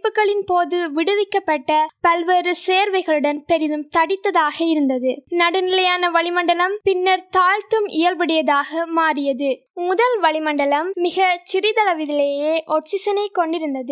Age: 20-39